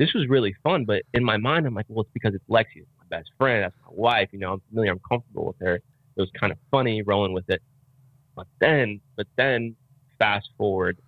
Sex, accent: male, American